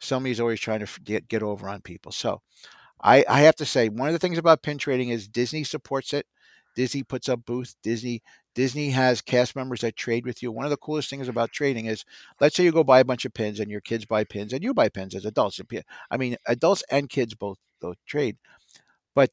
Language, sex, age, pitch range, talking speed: English, male, 50-69, 120-155 Hz, 235 wpm